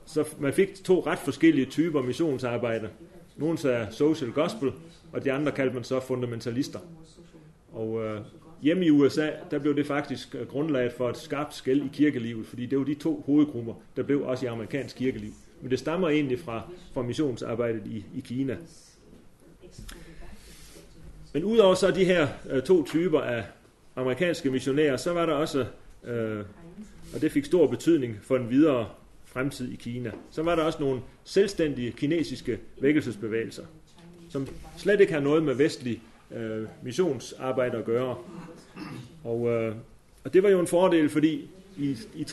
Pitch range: 125-165 Hz